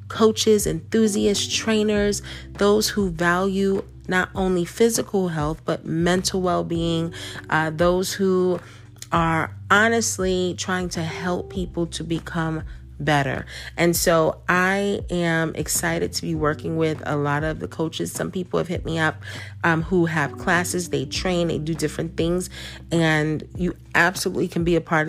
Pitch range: 150-190 Hz